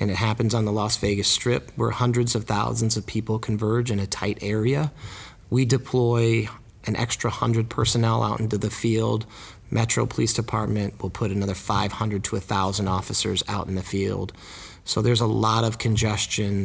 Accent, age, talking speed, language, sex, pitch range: American, 40-59, 175 wpm, English, male, 105-120 Hz